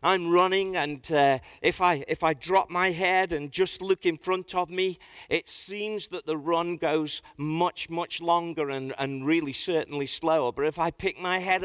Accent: British